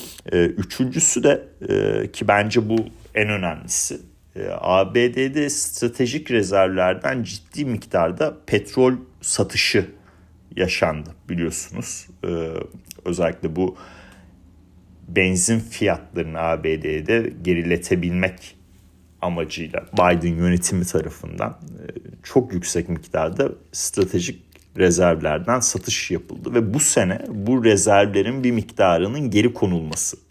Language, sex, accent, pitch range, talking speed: Turkish, male, native, 85-110 Hz, 85 wpm